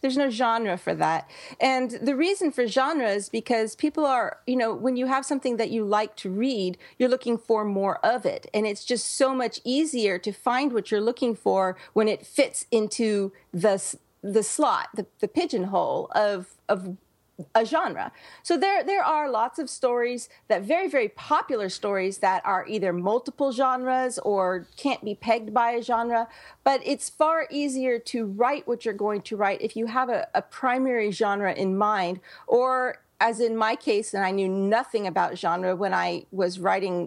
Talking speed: 190 wpm